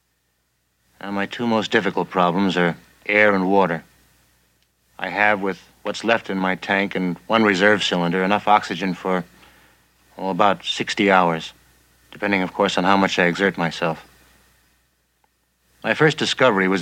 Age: 60-79